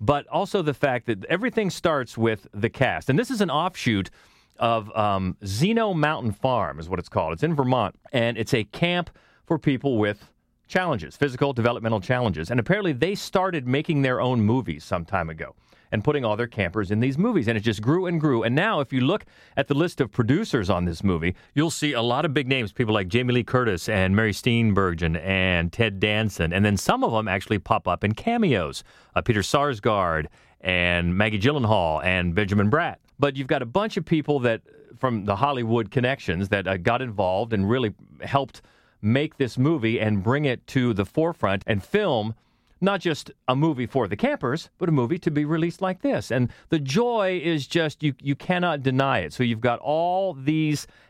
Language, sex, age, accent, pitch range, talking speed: English, male, 40-59, American, 110-155 Hz, 205 wpm